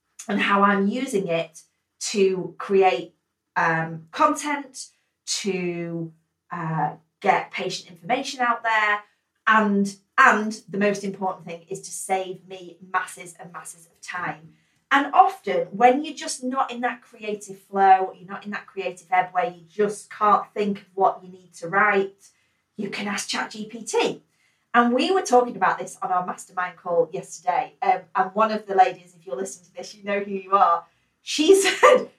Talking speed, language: 170 wpm, English